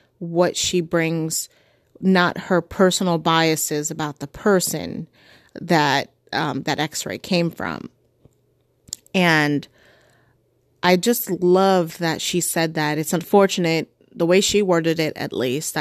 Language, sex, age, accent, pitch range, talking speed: English, female, 30-49, American, 155-185 Hz, 125 wpm